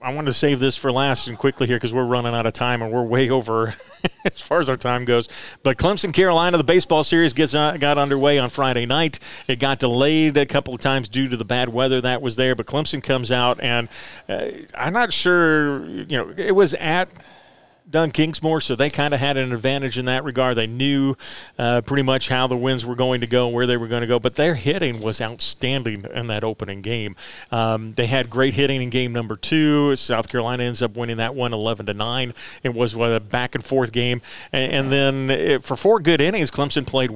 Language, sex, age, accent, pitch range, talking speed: English, male, 40-59, American, 115-140 Hz, 225 wpm